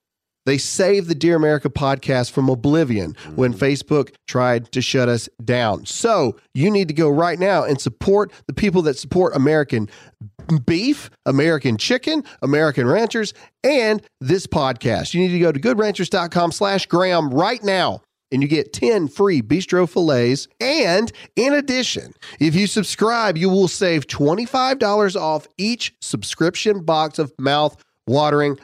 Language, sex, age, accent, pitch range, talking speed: English, male, 40-59, American, 145-205 Hz, 145 wpm